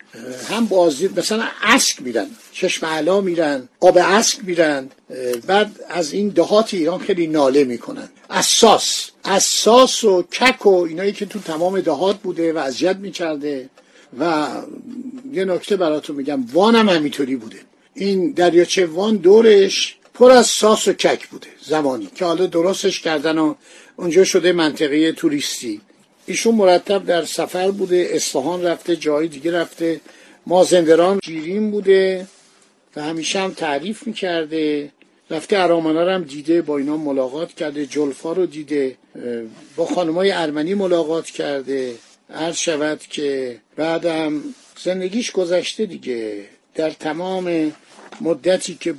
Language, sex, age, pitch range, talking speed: Persian, male, 50-69, 155-200 Hz, 135 wpm